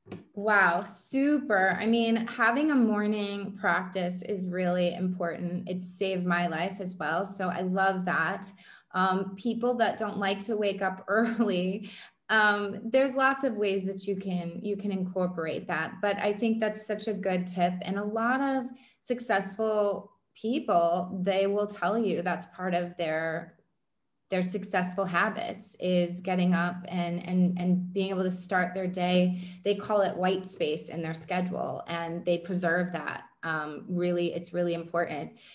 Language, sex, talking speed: English, female, 160 wpm